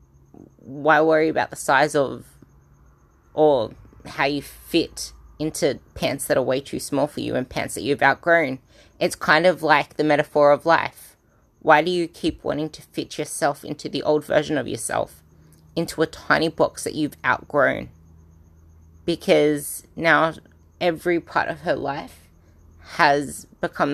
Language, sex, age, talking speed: English, female, 20-39, 155 wpm